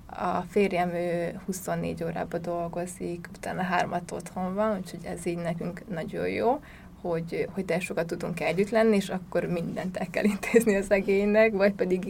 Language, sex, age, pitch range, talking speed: Hungarian, female, 20-39, 180-210 Hz, 155 wpm